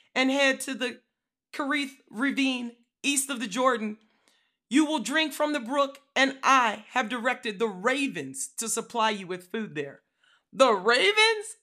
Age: 40-59